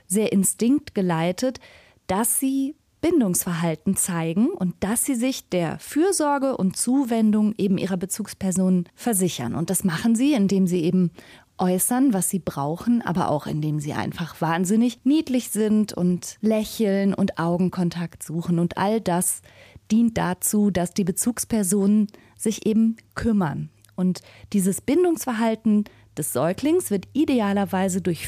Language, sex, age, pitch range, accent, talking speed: German, female, 30-49, 175-215 Hz, German, 130 wpm